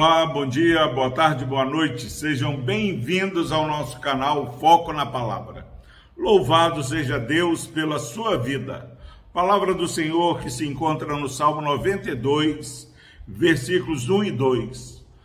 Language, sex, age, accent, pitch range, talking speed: Portuguese, male, 50-69, Brazilian, 135-180 Hz, 135 wpm